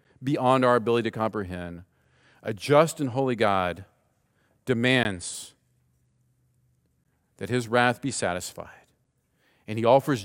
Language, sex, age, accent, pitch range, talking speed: English, male, 50-69, American, 100-135 Hz, 110 wpm